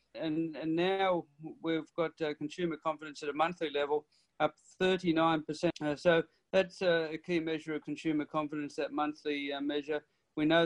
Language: English